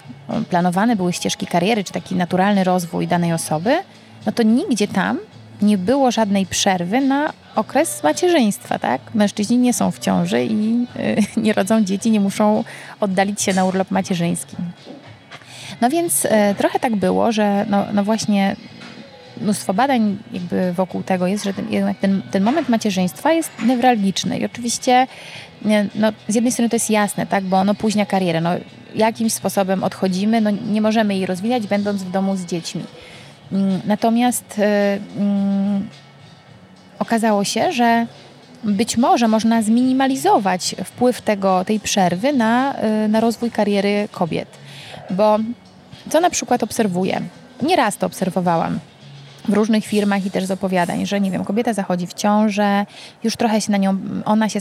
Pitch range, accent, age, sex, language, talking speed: 185-225 Hz, native, 20-39, female, Polish, 155 wpm